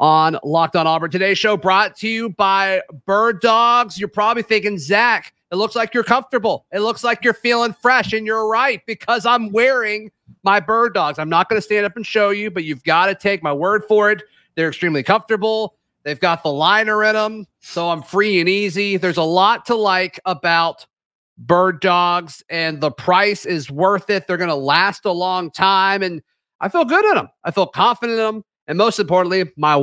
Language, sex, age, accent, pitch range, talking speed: English, male, 40-59, American, 160-210 Hz, 210 wpm